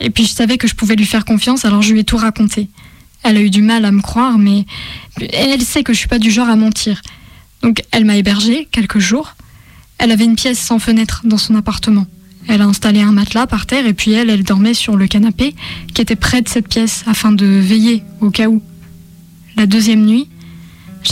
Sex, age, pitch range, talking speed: female, 20-39, 205-240 Hz, 235 wpm